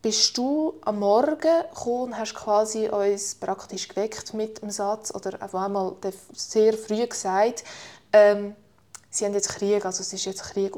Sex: female